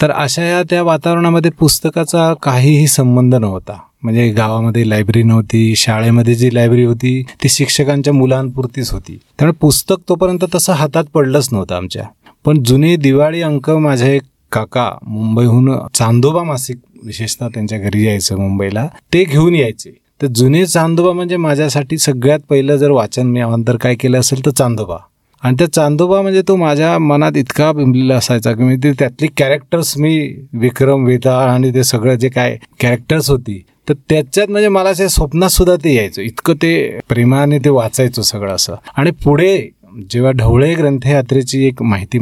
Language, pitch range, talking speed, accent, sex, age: Marathi, 115-150 Hz, 160 wpm, native, male, 30-49